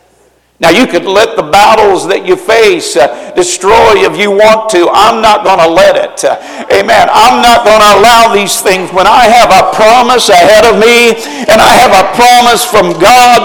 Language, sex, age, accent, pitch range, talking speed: English, male, 50-69, American, 215-255 Hz, 190 wpm